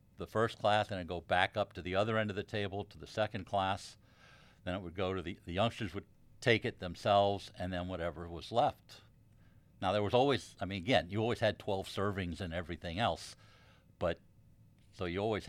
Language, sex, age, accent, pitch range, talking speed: English, male, 60-79, American, 90-110 Hz, 215 wpm